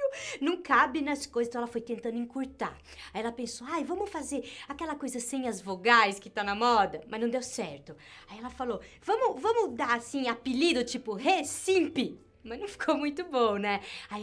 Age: 20-39